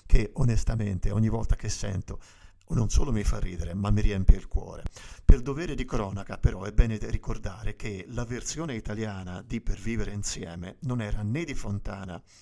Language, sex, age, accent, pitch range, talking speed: Italian, male, 50-69, native, 100-120 Hz, 180 wpm